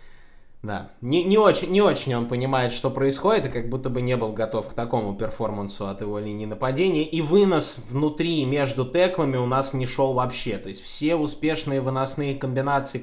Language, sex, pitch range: Russian, male, 110-135 Hz